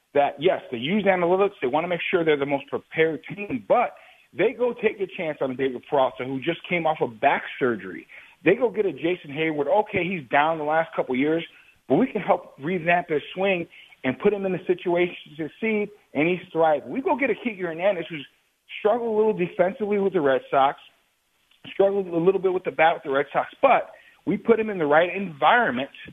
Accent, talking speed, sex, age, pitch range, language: American, 220 wpm, male, 40-59, 160-200 Hz, English